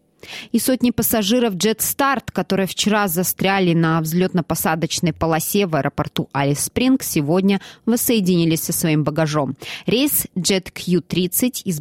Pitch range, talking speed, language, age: 155-195 Hz, 115 wpm, Russian, 20-39